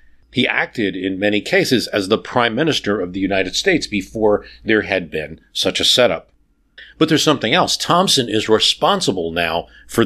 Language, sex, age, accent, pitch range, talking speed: English, male, 40-59, American, 85-120 Hz, 175 wpm